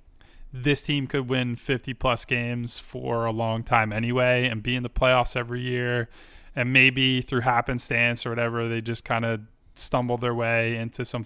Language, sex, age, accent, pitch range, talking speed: English, male, 20-39, American, 110-130 Hz, 180 wpm